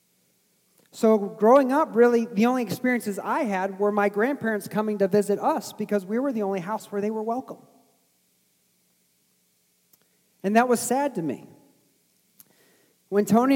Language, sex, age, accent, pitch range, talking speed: English, male, 40-59, American, 180-210 Hz, 150 wpm